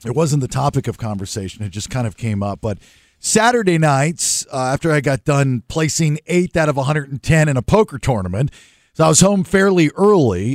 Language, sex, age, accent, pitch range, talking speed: English, male, 50-69, American, 115-160 Hz, 200 wpm